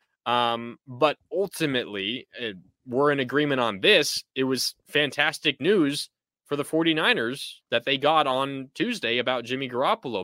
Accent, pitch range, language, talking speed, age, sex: American, 130-155 Hz, English, 140 wpm, 20-39, male